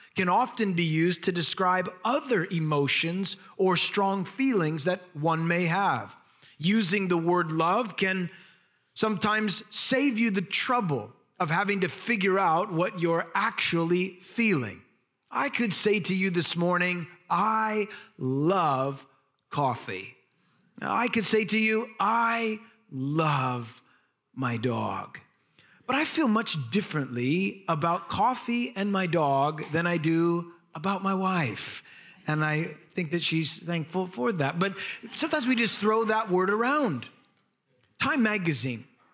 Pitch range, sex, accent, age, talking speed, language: 160-215 Hz, male, American, 30-49, 135 wpm, English